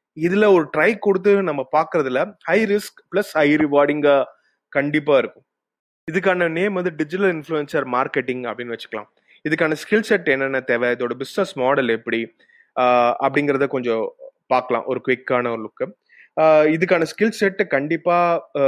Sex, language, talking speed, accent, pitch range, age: male, Tamil, 130 wpm, native, 130-175 Hz, 30-49